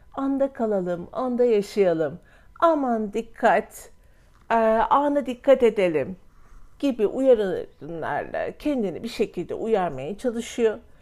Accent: native